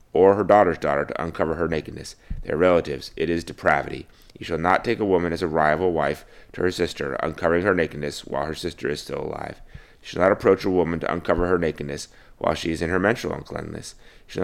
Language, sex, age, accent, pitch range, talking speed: English, male, 30-49, American, 75-90 Hz, 225 wpm